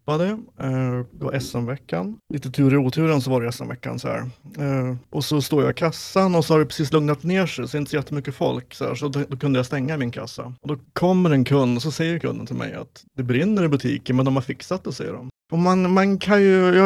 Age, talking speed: 30-49, 260 wpm